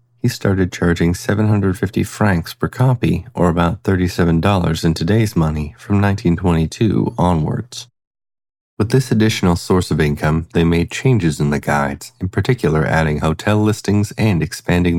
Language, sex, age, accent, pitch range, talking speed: English, male, 30-49, American, 85-110 Hz, 140 wpm